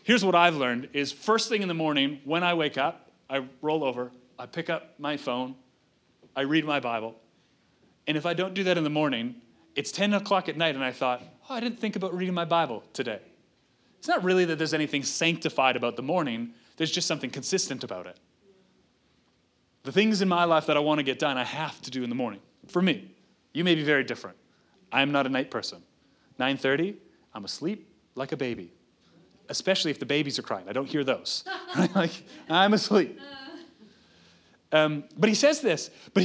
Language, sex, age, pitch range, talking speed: English, male, 30-49, 135-190 Hz, 205 wpm